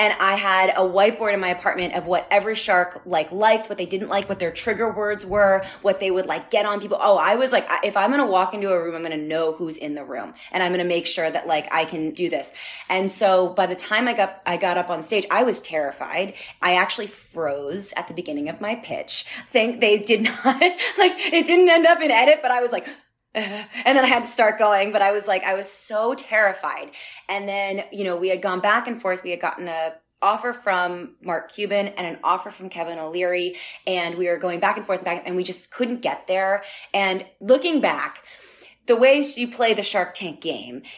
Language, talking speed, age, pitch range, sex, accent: English, 240 wpm, 20-39, 175-215 Hz, female, American